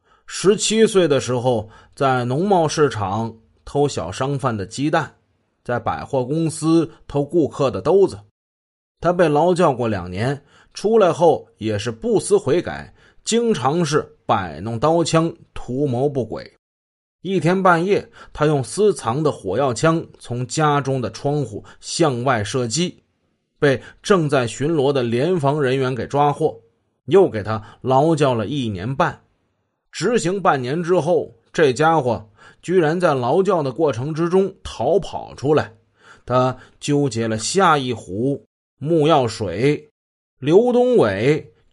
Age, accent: 30-49, native